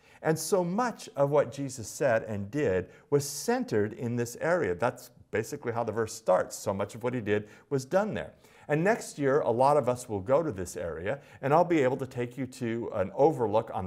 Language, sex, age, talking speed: English, male, 50-69, 225 wpm